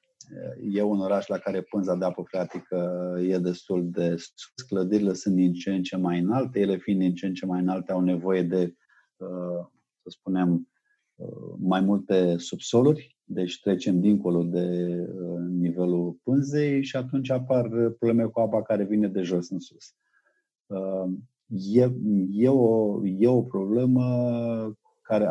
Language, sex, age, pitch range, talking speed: Romanian, male, 30-49, 90-115 Hz, 145 wpm